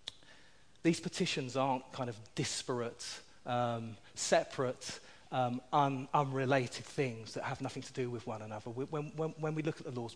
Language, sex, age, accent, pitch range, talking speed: English, male, 40-59, British, 115-145 Hz, 170 wpm